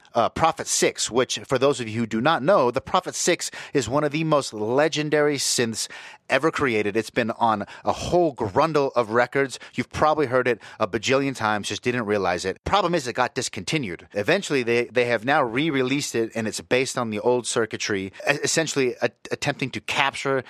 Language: English